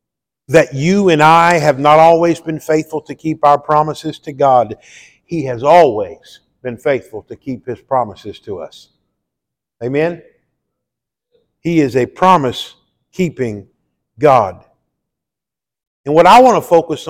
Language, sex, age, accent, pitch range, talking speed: English, male, 50-69, American, 150-195 Hz, 135 wpm